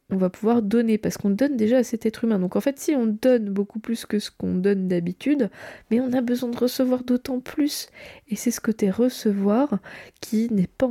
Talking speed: 225 wpm